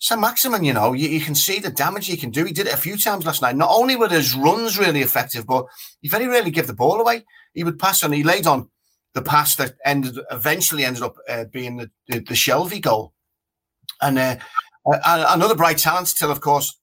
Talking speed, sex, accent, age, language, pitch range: 235 wpm, male, British, 30-49, English, 125-165 Hz